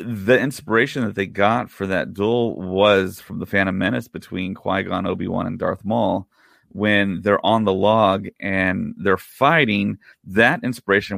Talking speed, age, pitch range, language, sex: 155 wpm, 30-49, 95-110 Hz, English, male